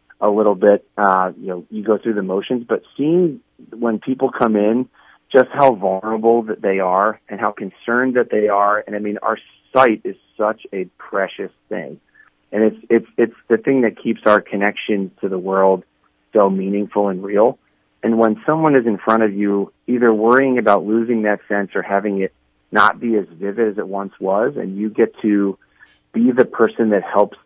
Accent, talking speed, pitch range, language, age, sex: American, 195 wpm, 95-115 Hz, English, 30-49, male